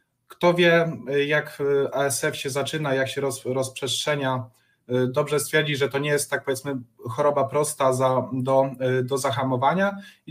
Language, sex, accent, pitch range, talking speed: Polish, male, native, 130-155 Hz, 140 wpm